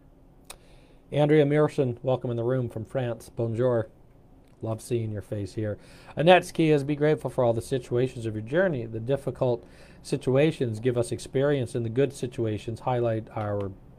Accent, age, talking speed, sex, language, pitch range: American, 40-59, 160 wpm, male, English, 115-140 Hz